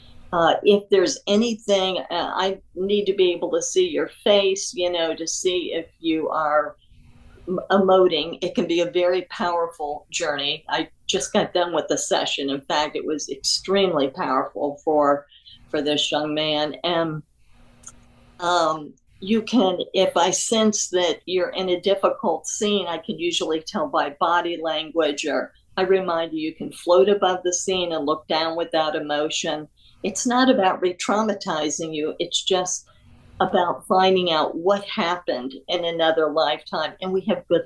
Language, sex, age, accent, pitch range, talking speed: English, female, 50-69, American, 155-195 Hz, 160 wpm